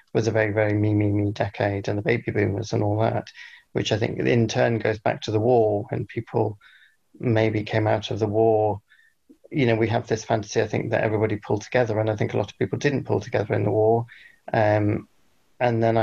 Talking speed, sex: 230 wpm, male